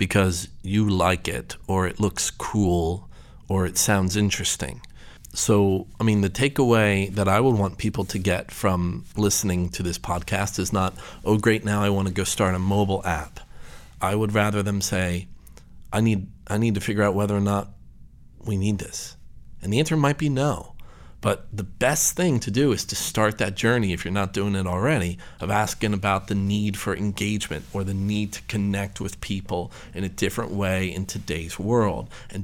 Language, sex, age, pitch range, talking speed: English, male, 40-59, 95-110 Hz, 195 wpm